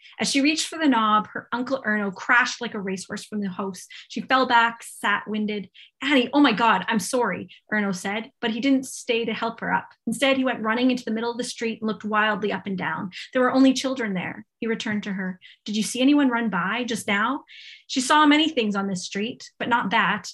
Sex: female